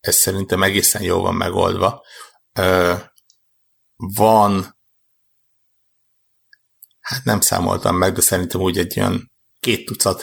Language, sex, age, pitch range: Hungarian, male, 60-79, 95-115 Hz